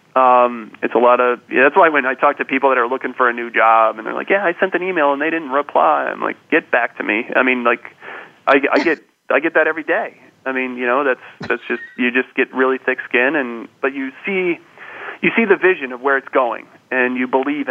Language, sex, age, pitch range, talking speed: English, male, 30-49, 125-145 Hz, 260 wpm